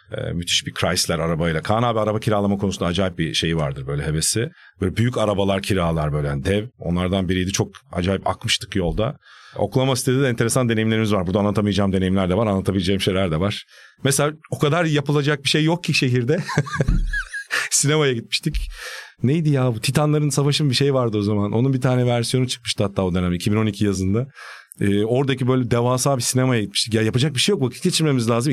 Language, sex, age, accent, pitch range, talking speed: Turkish, male, 40-59, native, 100-145 Hz, 185 wpm